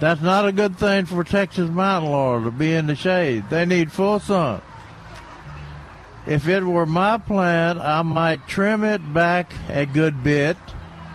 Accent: American